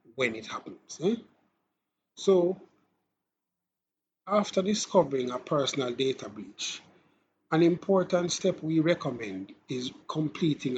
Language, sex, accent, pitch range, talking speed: English, male, Nigerian, 130-180 Hz, 100 wpm